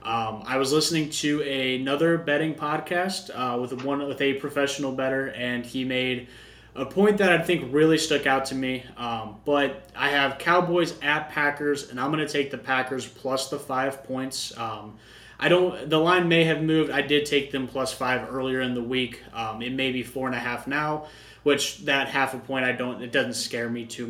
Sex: male